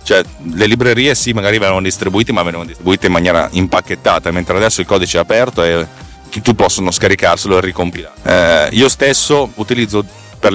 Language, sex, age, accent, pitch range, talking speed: Italian, male, 30-49, native, 90-115 Hz, 170 wpm